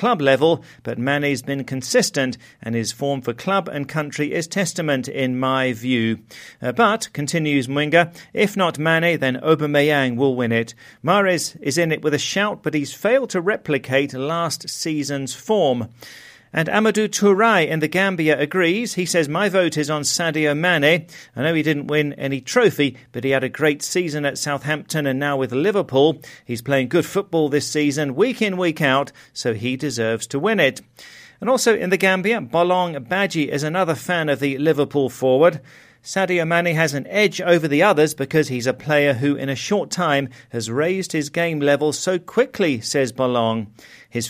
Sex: male